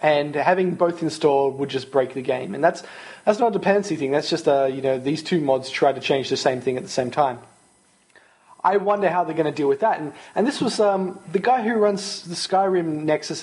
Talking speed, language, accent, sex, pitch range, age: 245 wpm, English, Australian, male, 135-175 Hz, 20-39